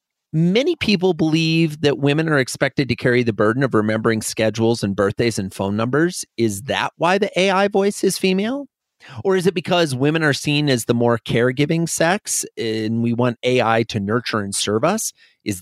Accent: American